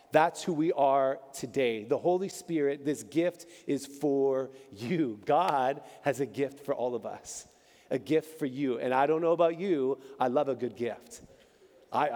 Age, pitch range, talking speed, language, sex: 40-59, 145-185 Hz, 185 wpm, English, male